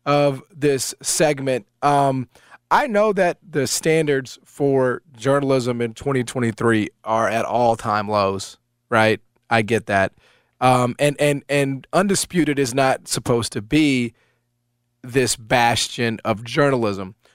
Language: English